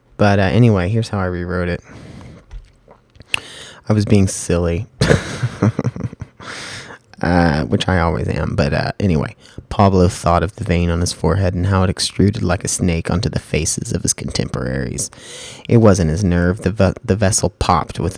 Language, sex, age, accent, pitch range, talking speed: English, male, 30-49, American, 90-115 Hz, 170 wpm